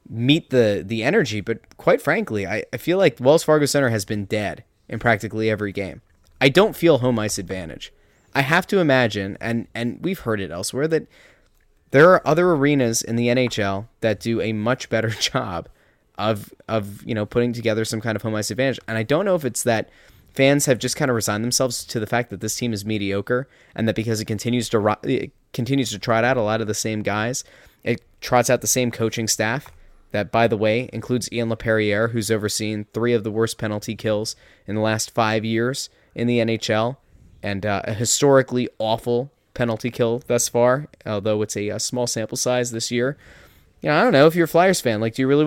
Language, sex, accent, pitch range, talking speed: English, male, American, 110-130 Hz, 215 wpm